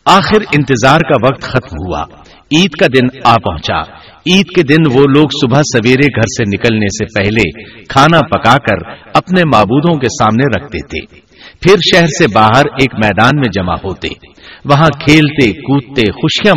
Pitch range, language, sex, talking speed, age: 115-160 Hz, Urdu, male, 165 wpm, 60-79